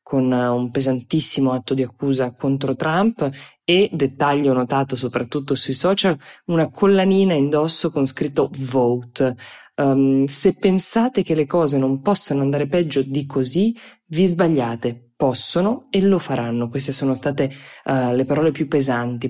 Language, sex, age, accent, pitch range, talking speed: Italian, female, 20-39, native, 130-160 Hz, 135 wpm